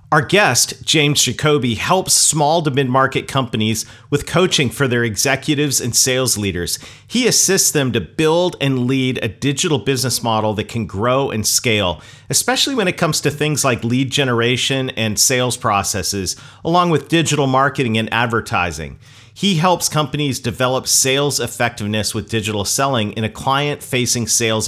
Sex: male